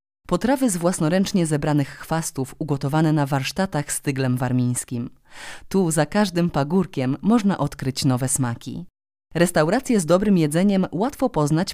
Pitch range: 140-195 Hz